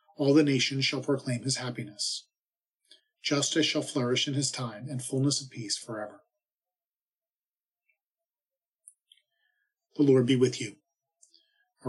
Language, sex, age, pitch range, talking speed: English, male, 40-59, 130-170 Hz, 120 wpm